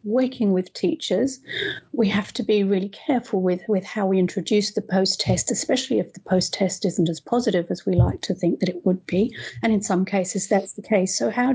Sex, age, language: female, 40-59, English